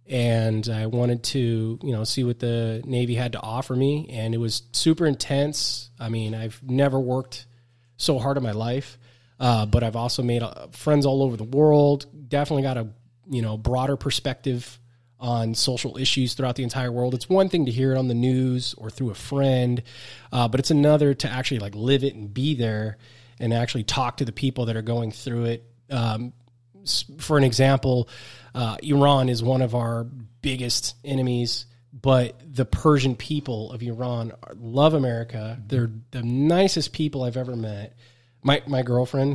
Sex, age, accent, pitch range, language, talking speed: male, 20-39, American, 120-135 Hz, English, 185 wpm